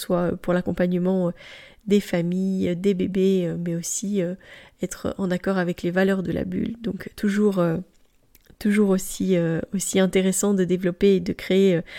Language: French